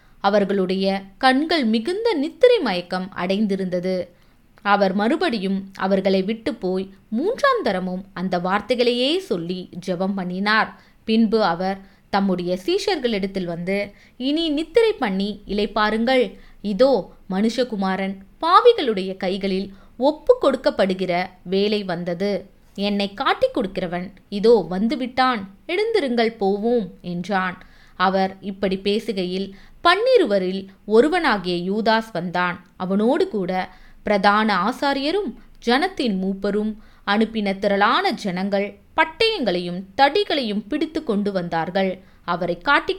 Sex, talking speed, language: female, 95 wpm, Tamil